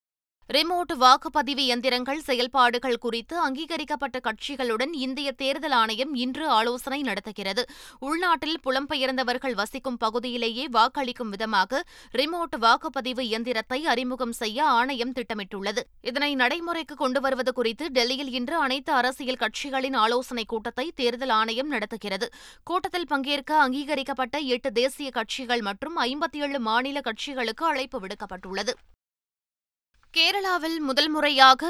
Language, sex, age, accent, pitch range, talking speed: Tamil, female, 20-39, native, 240-285 Hz, 105 wpm